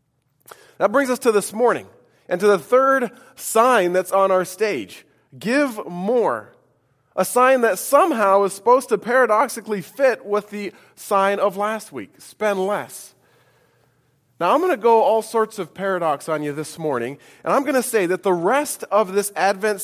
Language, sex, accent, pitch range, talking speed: English, male, American, 135-220 Hz, 175 wpm